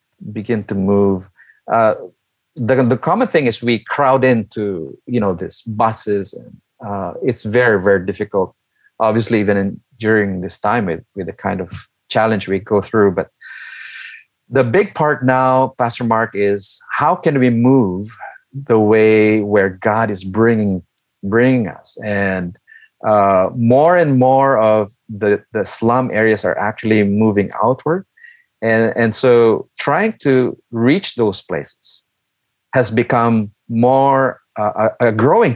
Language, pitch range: English, 105-130 Hz